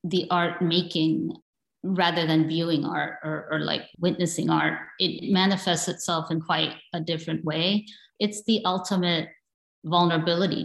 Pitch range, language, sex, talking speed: 160-185 Hz, English, female, 135 wpm